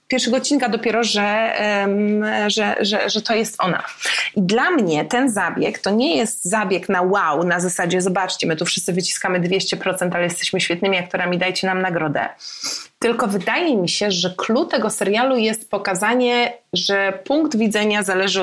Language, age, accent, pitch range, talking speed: Polish, 20-39, native, 190-245 Hz, 165 wpm